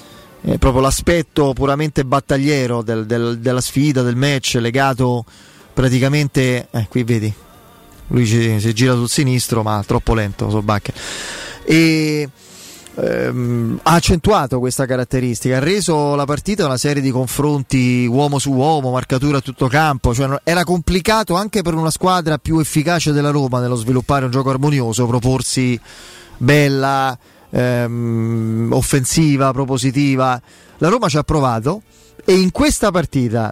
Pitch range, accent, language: 125-160 Hz, native, Italian